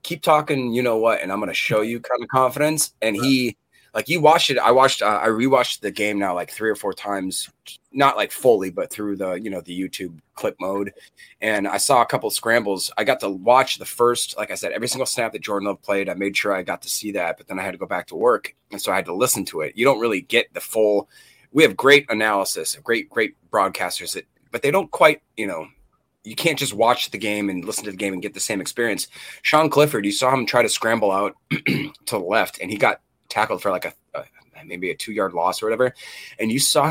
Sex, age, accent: male, 30-49, American